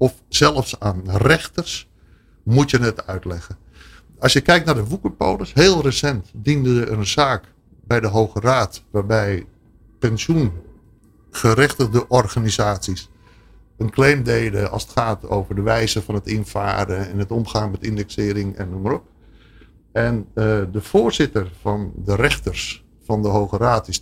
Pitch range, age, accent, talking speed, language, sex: 100-125 Hz, 60-79, Dutch, 145 wpm, Dutch, male